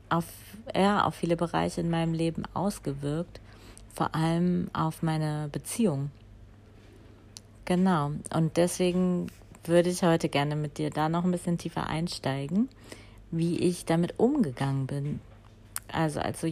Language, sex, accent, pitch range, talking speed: German, female, German, 135-165 Hz, 130 wpm